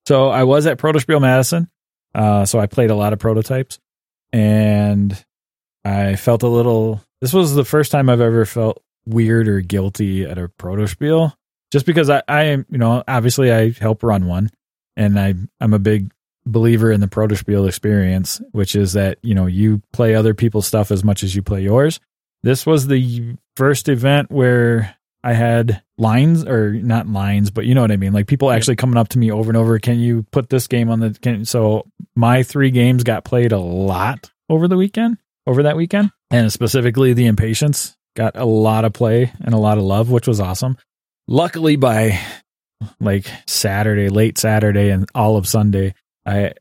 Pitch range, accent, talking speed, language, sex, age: 105-125 Hz, American, 190 wpm, English, male, 20-39